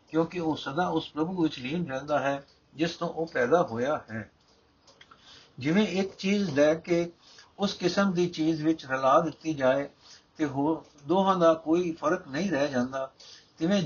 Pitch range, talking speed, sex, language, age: 150-180 Hz, 160 wpm, male, Punjabi, 60-79